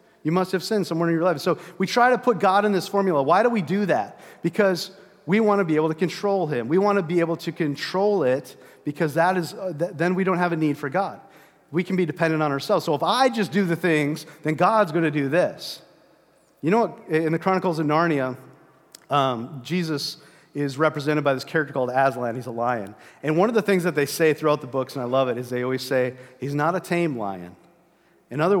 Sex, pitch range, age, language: male, 140-185 Hz, 40-59, English